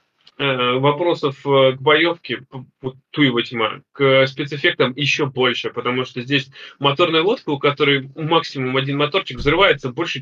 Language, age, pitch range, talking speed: Russian, 20-39, 130-155 Hz, 125 wpm